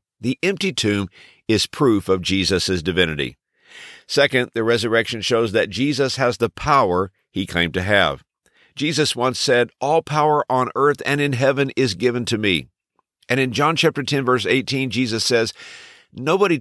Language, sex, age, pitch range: English, male, 50-69, 100-130 Hz